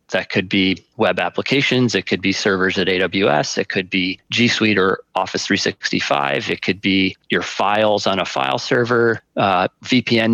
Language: English